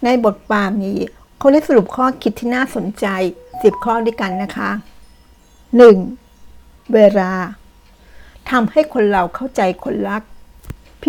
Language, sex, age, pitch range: Thai, female, 60-79, 195-245 Hz